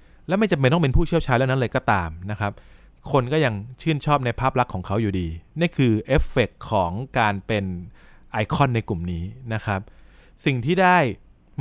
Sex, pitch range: male, 100-125 Hz